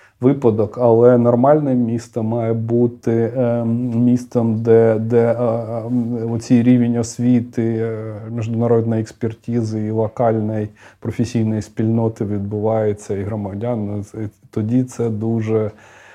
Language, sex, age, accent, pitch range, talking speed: Ukrainian, male, 20-39, native, 110-125 Hz, 90 wpm